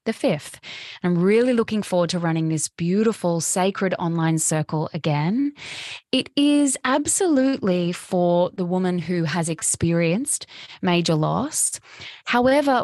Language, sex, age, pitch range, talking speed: English, female, 10-29, 175-215 Hz, 120 wpm